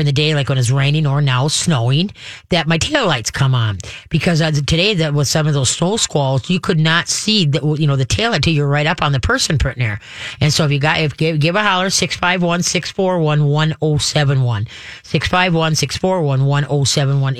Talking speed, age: 200 wpm, 40-59